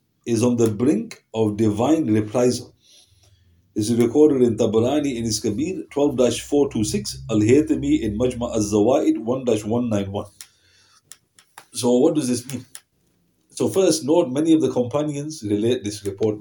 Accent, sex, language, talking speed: Indian, male, English, 130 wpm